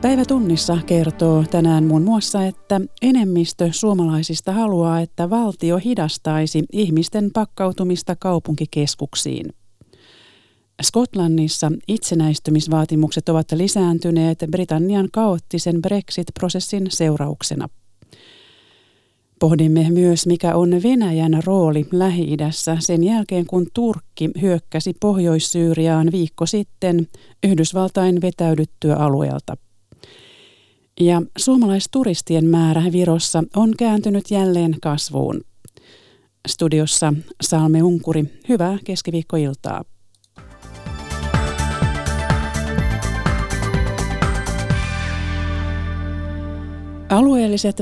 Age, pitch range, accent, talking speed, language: 40-59, 155-185 Hz, native, 70 wpm, Finnish